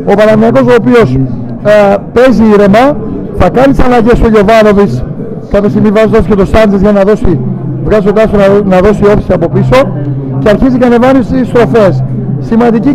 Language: Greek